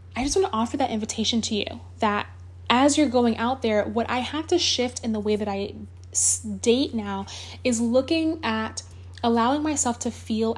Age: 10-29